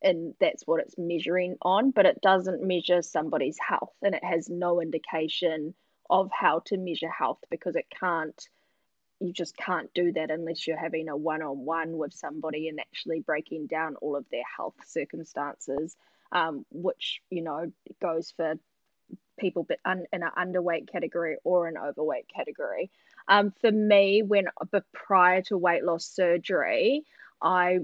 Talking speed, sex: 155 wpm, female